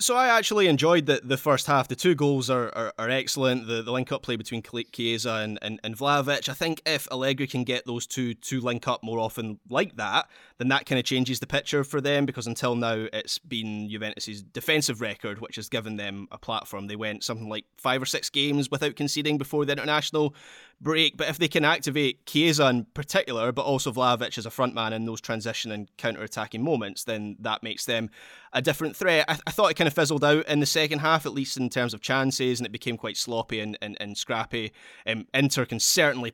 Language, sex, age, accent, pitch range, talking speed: English, male, 20-39, British, 115-145 Hz, 230 wpm